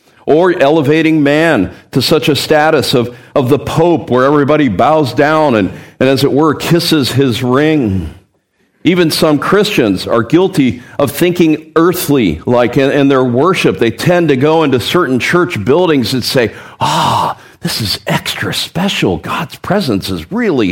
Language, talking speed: English, 160 wpm